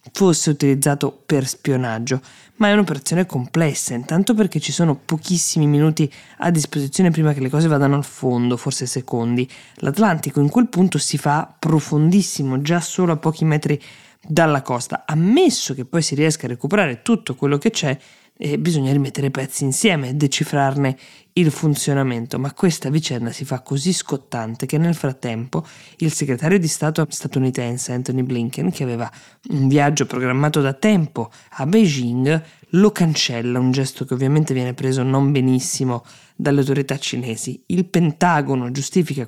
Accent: native